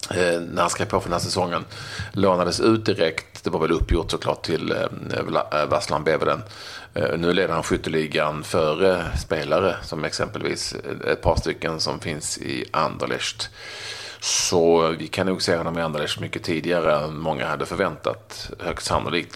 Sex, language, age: male, Swedish, 40-59